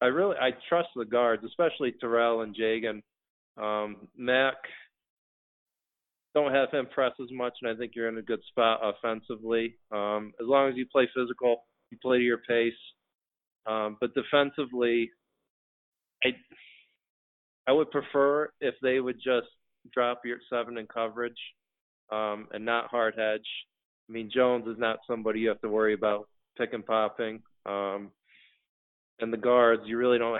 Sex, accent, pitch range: male, American, 105-120 Hz